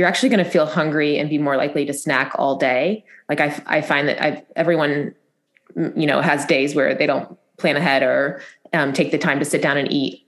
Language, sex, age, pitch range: English, female, 20-39, 145-160 Hz